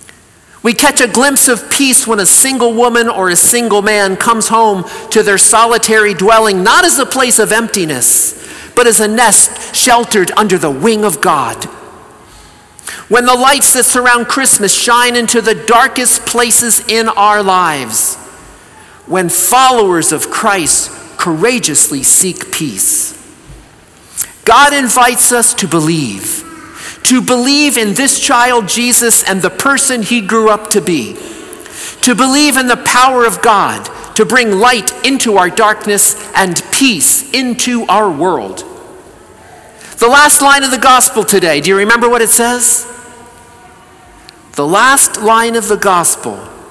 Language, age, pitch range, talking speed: English, 50-69, 210-250 Hz, 145 wpm